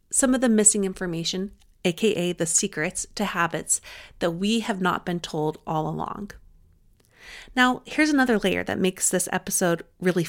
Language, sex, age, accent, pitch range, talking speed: English, female, 30-49, American, 185-220 Hz, 155 wpm